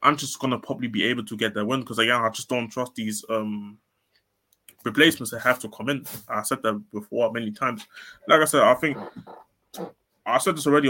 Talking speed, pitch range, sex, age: 215 wpm, 110-140 Hz, male, 20-39